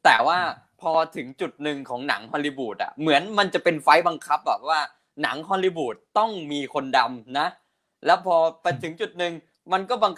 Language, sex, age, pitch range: Thai, male, 20-39, 150-185 Hz